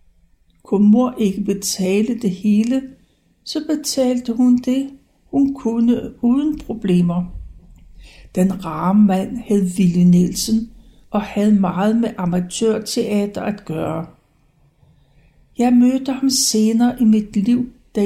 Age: 60-79